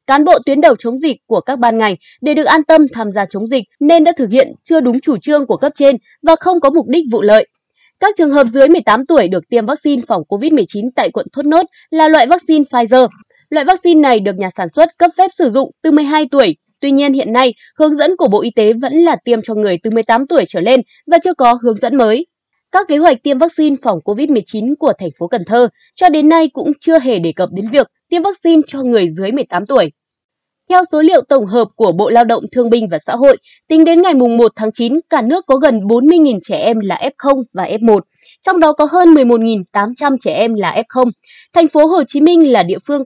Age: 20-39